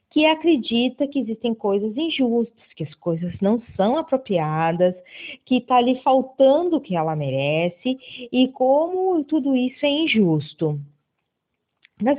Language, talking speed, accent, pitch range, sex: Portuguese, 135 wpm, Brazilian, 190-280 Hz, female